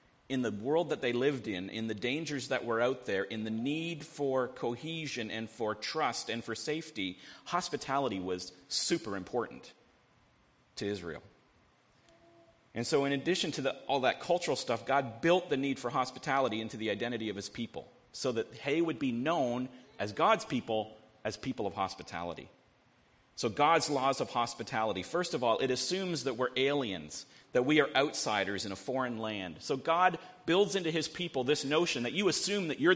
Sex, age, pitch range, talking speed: male, 40-59, 115-165 Hz, 180 wpm